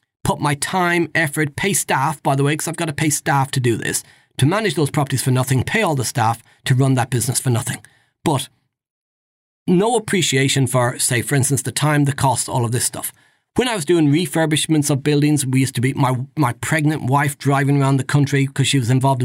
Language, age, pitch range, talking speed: English, 40-59, 130-155 Hz, 225 wpm